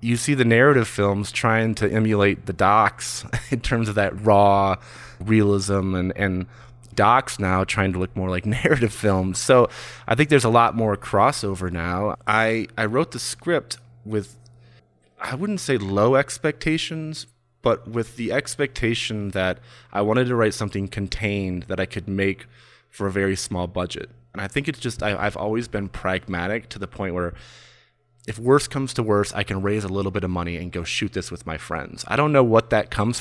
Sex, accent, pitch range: male, American, 95-120 Hz